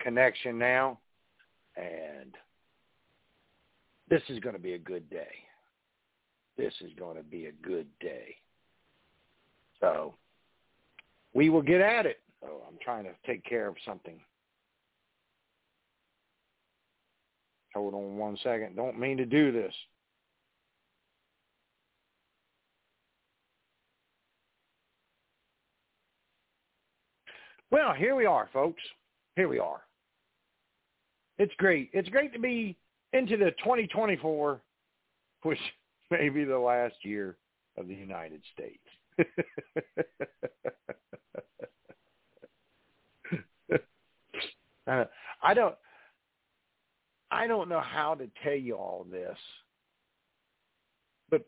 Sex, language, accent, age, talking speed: male, English, American, 60-79, 95 wpm